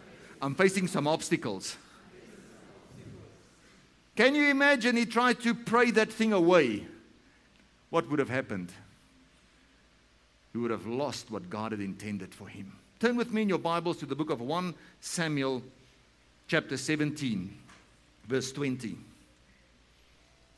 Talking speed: 125 wpm